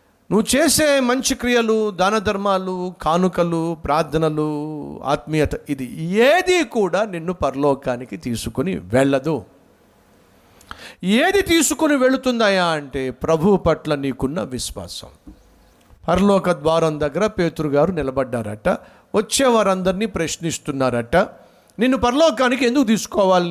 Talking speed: 85 wpm